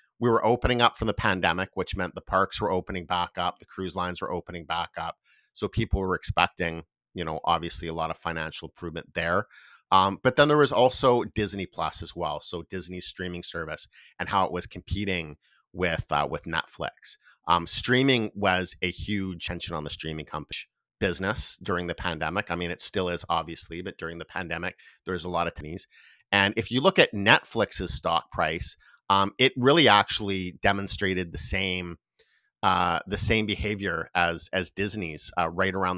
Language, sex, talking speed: English, male, 185 wpm